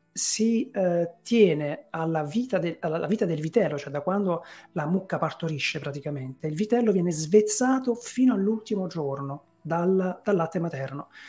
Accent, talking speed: native, 140 wpm